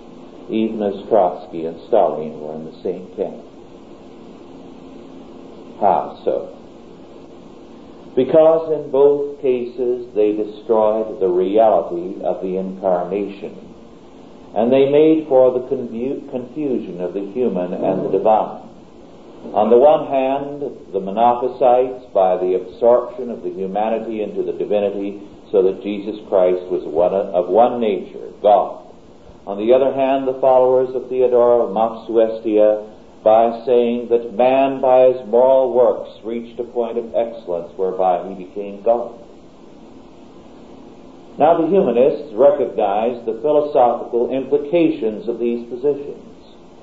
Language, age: English, 50-69